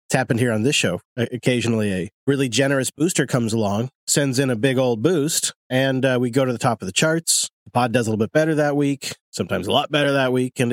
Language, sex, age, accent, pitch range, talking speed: English, male, 40-59, American, 115-150 Hz, 250 wpm